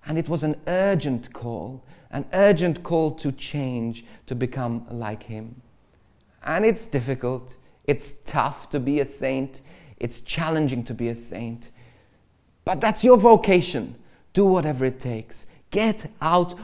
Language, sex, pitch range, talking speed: English, male, 125-180 Hz, 145 wpm